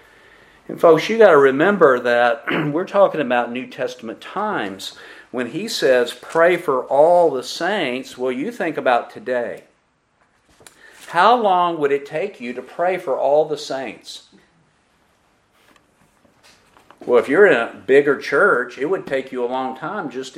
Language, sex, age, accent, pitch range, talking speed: English, male, 50-69, American, 140-220 Hz, 155 wpm